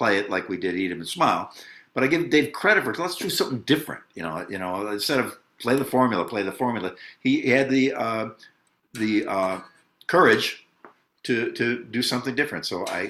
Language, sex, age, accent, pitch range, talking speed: English, male, 60-79, American, 105-145 Hz, 210 wpm